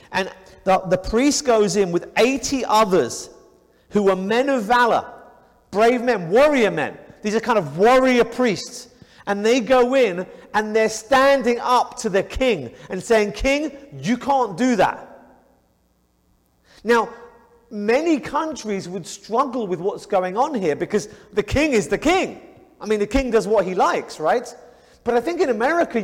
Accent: British